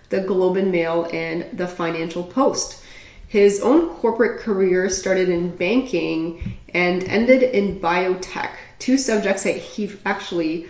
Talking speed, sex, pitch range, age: 135 wpm, female, 170-205 Hz, 30-49